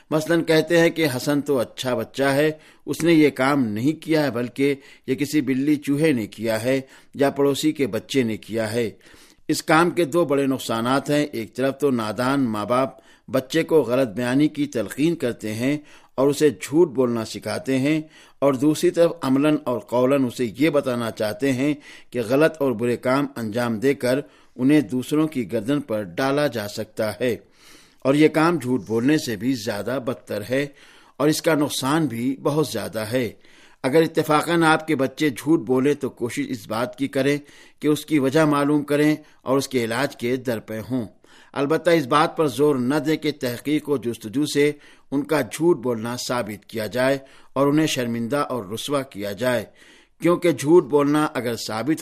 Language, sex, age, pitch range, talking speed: Urdu, male, 60-79, 125-150 Hz, 185 wpm